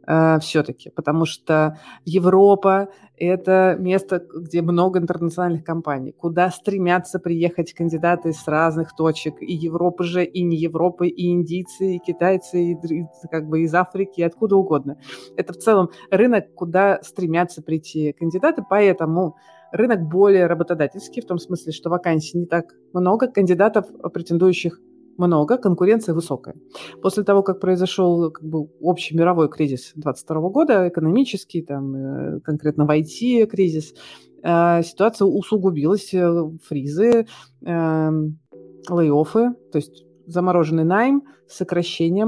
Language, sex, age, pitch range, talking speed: Russian, female, 30-49, 160-190 Hz, 120 wpm